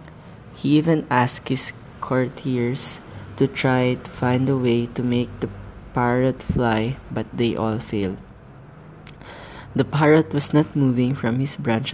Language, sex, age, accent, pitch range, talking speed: English, female, 20-39, Filipino, 115-140 Hz, 140 wpm